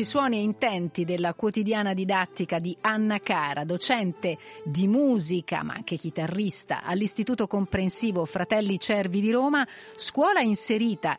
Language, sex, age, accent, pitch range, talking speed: Italian, female, 40-59, native, 170-210 Hz, 125 wpm